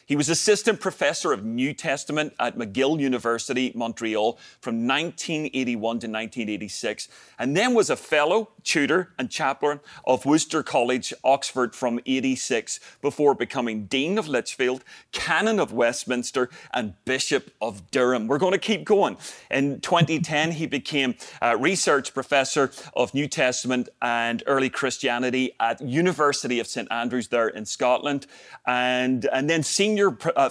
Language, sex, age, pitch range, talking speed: English, male, 30-49, 120-150 Hz, 140 wpm